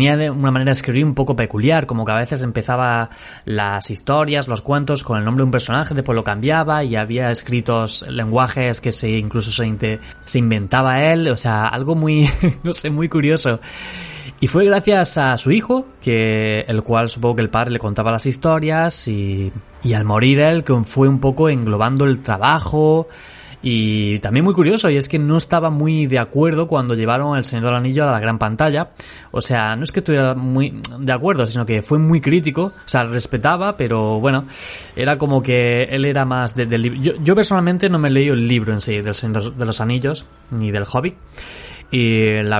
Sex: male